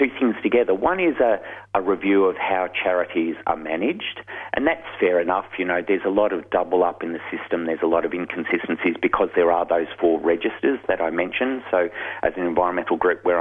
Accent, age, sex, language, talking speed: Australian, 40-59, male, English, 210 wpm